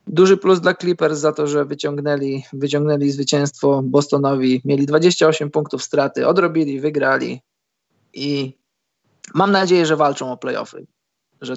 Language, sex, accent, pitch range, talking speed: Polish, male, native, 140-155 Hz, 130 wpm